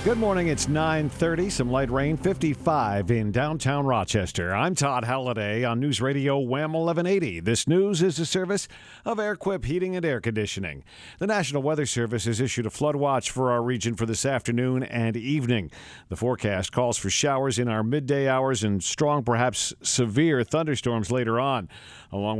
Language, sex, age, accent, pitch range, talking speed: English, male, 50-69, American, 110-150 Hz, 170 wpm